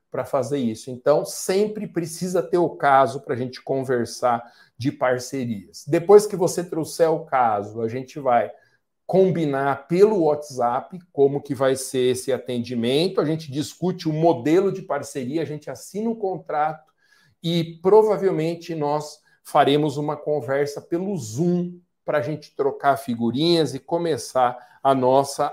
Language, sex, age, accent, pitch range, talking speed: Portuguese, male, 50-69, Brazilian, 130-170 Hz, 145 wpm